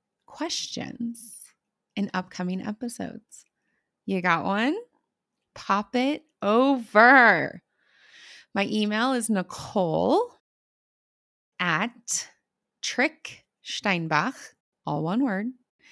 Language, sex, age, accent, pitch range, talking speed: English, female, 20-39, American, 195-270 Hz, 70 wpm